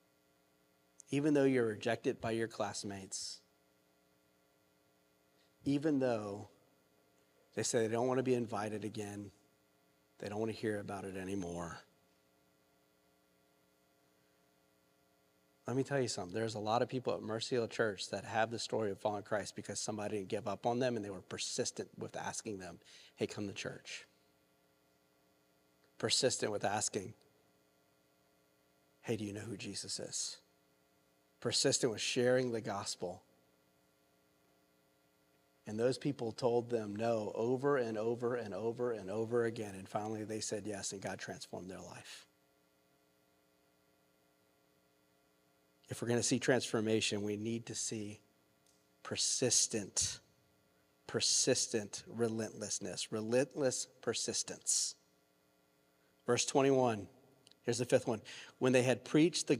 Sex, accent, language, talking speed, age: male, American, English, 130 wpm, 40-59